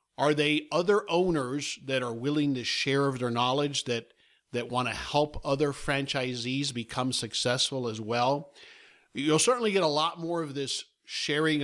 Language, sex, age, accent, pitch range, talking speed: English, male, 50-69, American, 120-150 Hz, 160 wpm